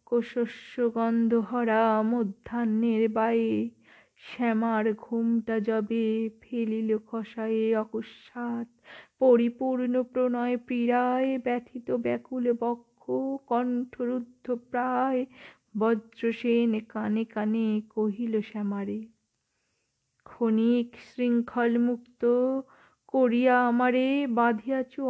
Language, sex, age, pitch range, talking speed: Bengali, female, 50-69, 230-260 Hz, 65 wpm